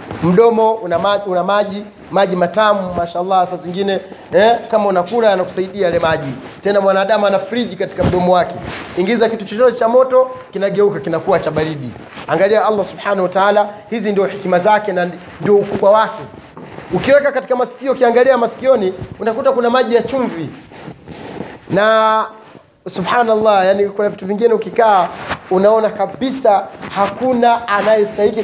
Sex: male